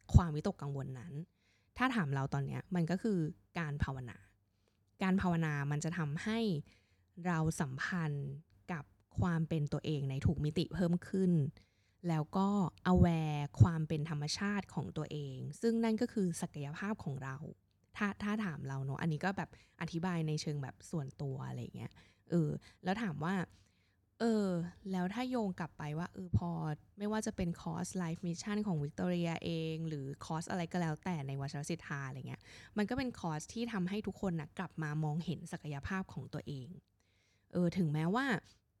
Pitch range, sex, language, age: 140-190 Hz, female, English, 20-39